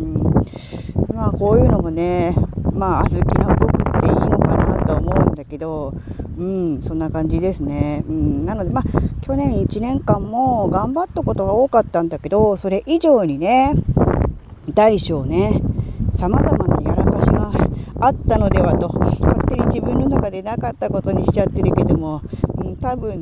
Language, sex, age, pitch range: Japanese, female, 40-59, 150-250 Hz